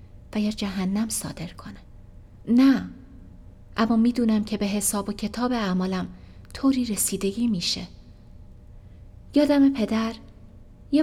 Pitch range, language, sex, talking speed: 195-260 Hz, Persian, female, 105 wpm